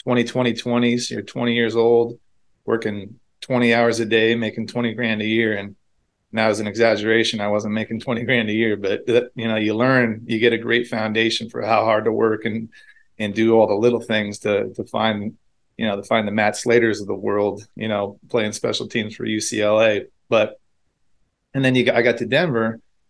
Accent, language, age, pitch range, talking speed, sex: American, English, 30-49, 105-115 Hz, 210 wpm, male